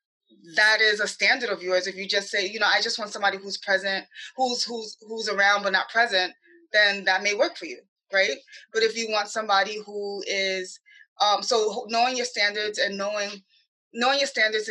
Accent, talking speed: American, 200 wpm